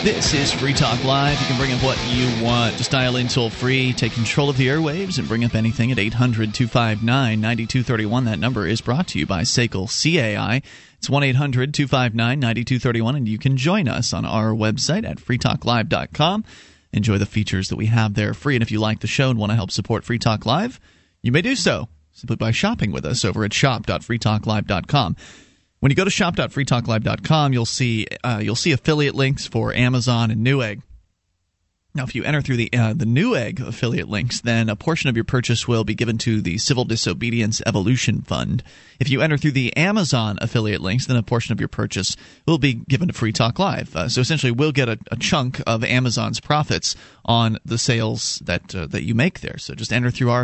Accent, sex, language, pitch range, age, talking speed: American, male, English, 110-130 Hz, 30-49, 200 wpm